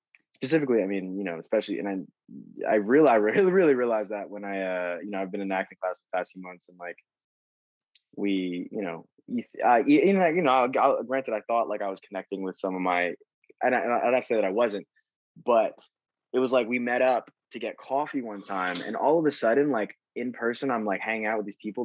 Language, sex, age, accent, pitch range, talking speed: English, male, 20-39, American, 95-115 Hz, 240 wpm